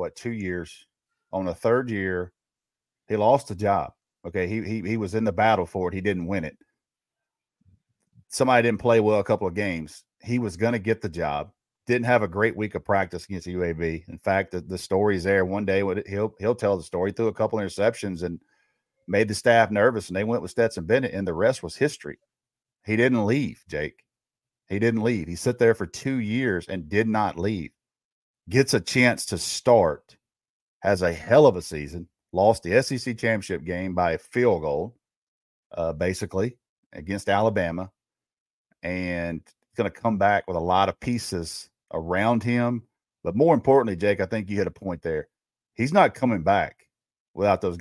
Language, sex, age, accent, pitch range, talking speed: English, male, 40-59, American, 90-115 Hz, 195 wpm